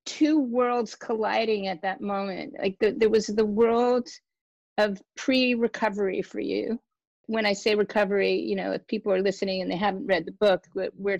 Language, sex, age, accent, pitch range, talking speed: English, female, 40-59, American, 190-225 Hz, 175 wpm